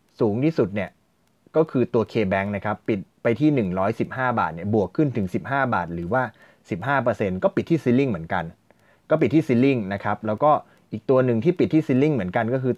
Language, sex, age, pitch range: Thai, male, 20-39, 100-130 Hz